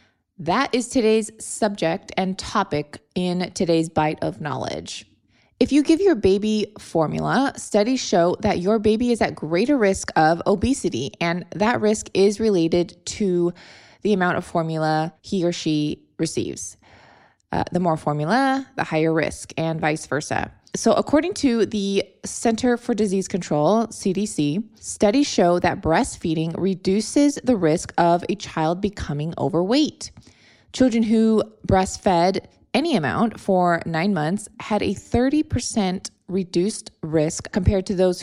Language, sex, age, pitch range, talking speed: English, female, 20-39, 165-220 Hz, 140 wpm